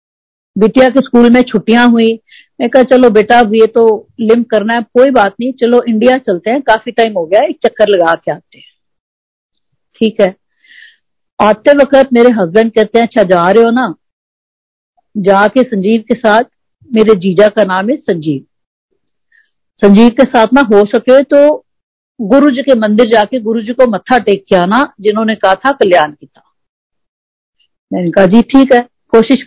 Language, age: Hindi, 50-69